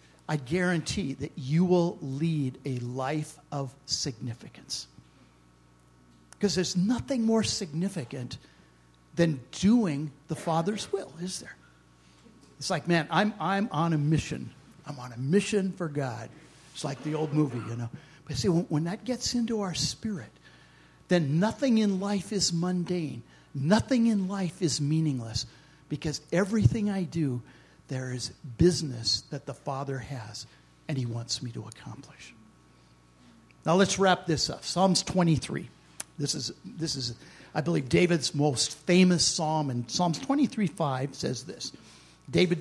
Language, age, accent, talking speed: English, 50-69, American, 145 wpm